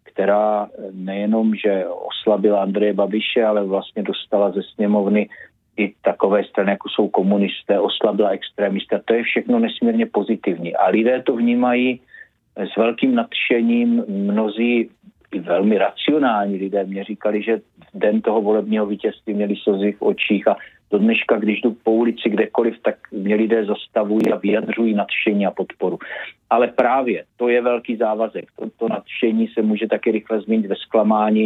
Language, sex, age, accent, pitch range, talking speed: Czech, male, 50-69, native, 105-115 Hz, 150 wpm